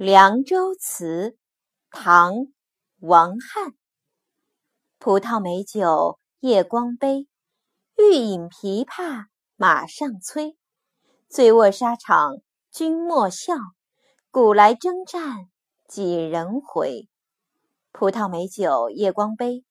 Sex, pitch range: female, 190-285 Hz